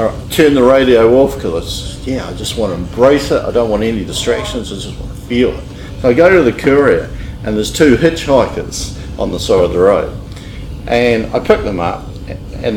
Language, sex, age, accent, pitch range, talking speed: English, male, 50-69, Australian, 110-160 Hz, 215 wpm